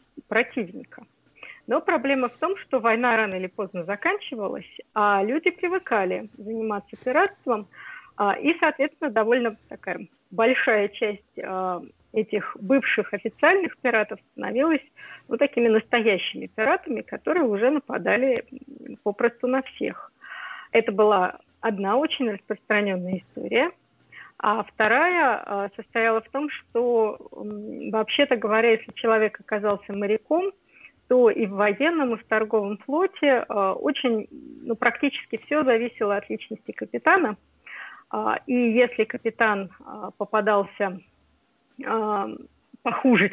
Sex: female